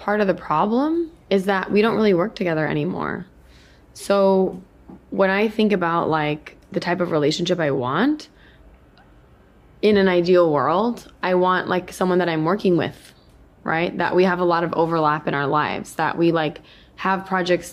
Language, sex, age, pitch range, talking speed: Urdu, female, 20-39, 165-205 Hz, 175 wpm